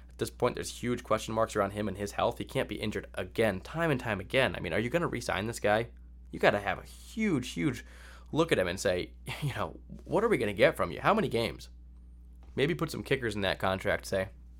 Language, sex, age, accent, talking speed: English, male, 20-39, American, 260 wpm